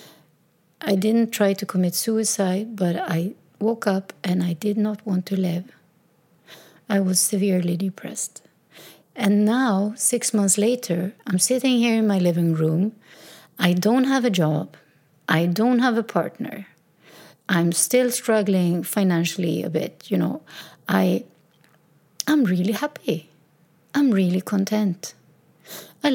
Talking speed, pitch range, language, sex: 135 wpm, 170-235 Hz, English, female